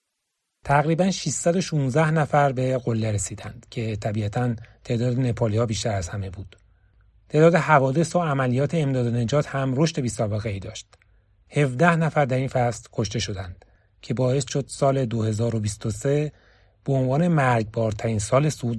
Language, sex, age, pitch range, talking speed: Persian, male, 30-49, 105-145 Hz, 135 wpm